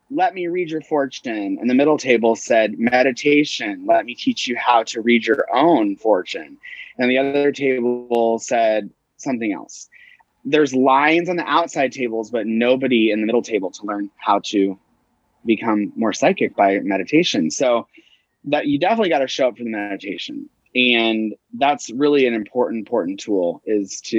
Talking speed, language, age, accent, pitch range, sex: 170 wpm, English, 30-49, American, 115-175 Hz, male